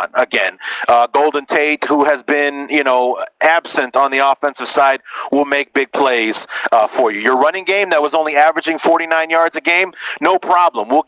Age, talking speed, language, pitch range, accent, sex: 40-59, 190 wpm, English, 125-155 Hz, American, male